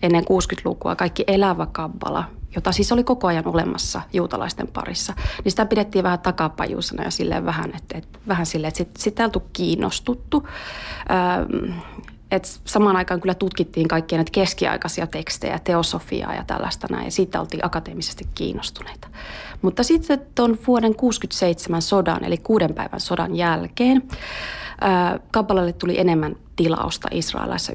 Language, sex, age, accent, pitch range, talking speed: Finnish, female, 30-49, native, 165-195 Hz, 140 wpm